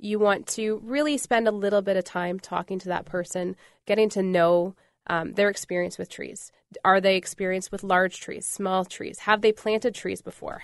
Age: 20-39